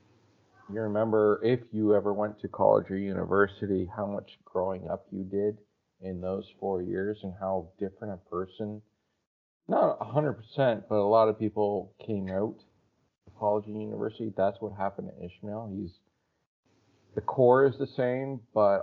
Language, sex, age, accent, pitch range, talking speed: English, male, 40-59, American, 95-110 Hz, 165 wpm